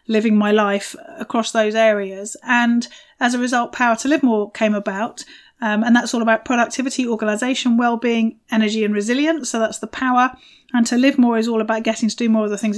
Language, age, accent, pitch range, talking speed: English, 30-49, British, 220-255 Hz, 210 wpm